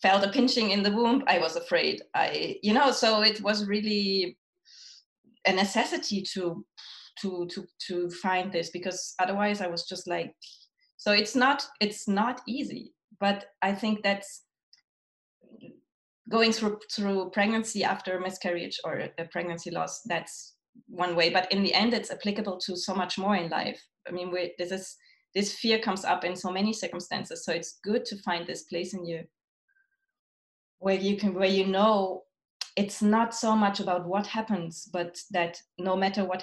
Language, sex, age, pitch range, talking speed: English, female, 20-39, 180-220 Hz, 175 wpm